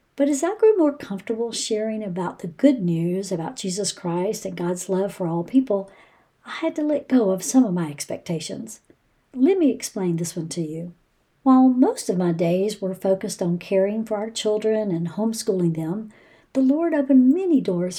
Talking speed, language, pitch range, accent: 190 wpm, English, 185-260 Hz, American